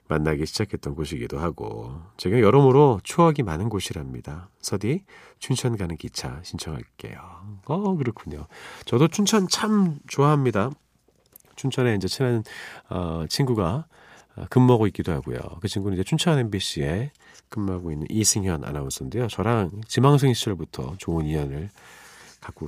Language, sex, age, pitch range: Korean, male, 40-59, 90-145 Hz